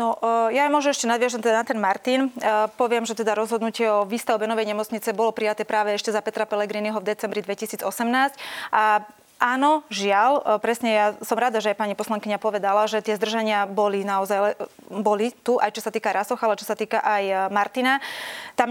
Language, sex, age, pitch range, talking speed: Slovak, female, 20-39, 205-230 Hz, 190 wpm